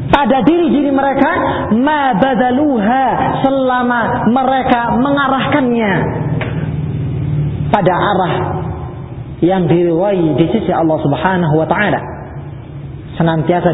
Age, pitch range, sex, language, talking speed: 40-59, 155-250 Hz, male, Malay, 85 wpm